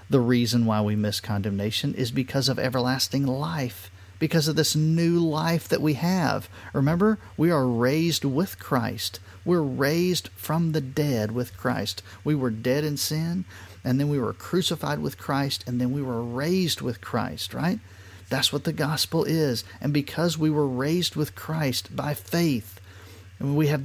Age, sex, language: 40-59, male, English